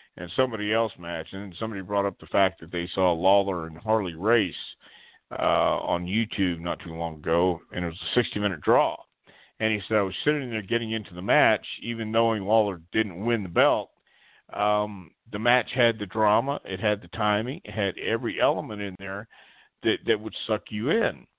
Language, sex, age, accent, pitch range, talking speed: English, male, 50-69, American, 95-115 Hz, 200 wpm